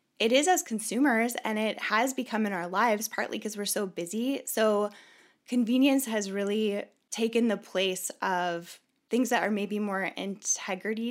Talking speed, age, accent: 160 wpm, 10-29, American